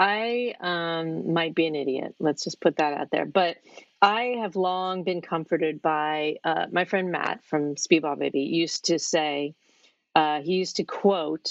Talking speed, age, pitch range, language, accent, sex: 175 wpm, 40-59, 160-195 Hz, English, American, female